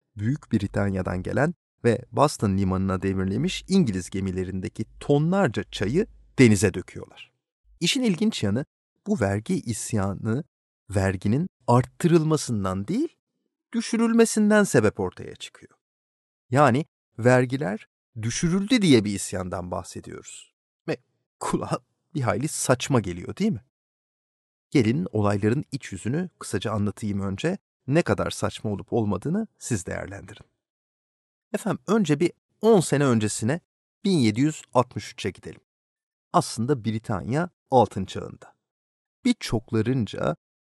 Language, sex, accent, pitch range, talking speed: Turkish, male, native, 100-150 Hz, 100 wpm